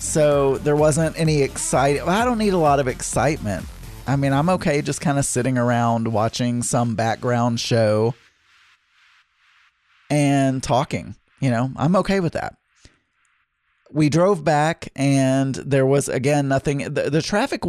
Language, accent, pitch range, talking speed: English, American, 115-155 Hz, 150 wpm